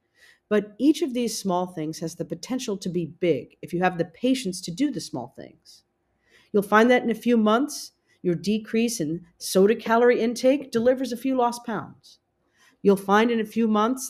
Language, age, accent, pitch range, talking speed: English, 40-59, American, 185-240 Hz, 195 wpm